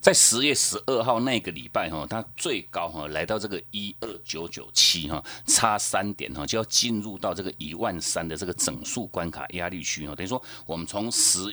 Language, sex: Chinese, male